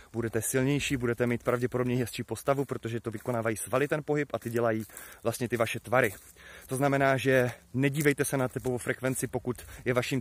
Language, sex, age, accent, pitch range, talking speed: Czech, male, 30-49, native, 115-135 Hz, 180 wpm